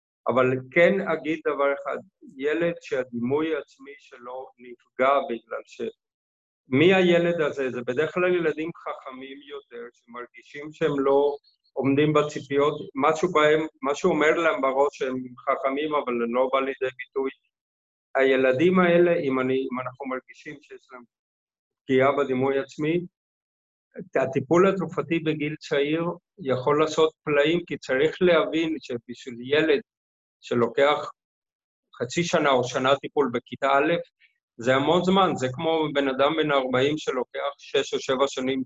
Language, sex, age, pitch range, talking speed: Hebrew, male, 50-69, 130-160 Hz, 130 wpm